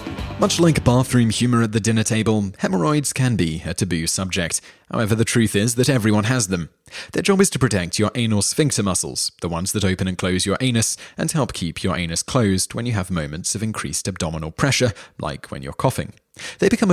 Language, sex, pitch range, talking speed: English, male, 90-120 Hz, 210 wpm